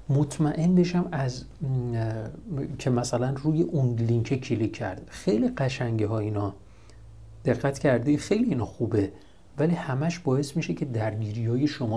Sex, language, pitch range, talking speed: male, Persian, 115-170 Hz, 140 wpm